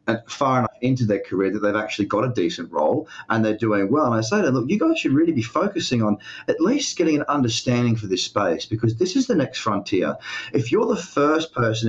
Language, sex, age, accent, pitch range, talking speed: English, male, 30-49, Australian, 100-135 Hz, 245 wpm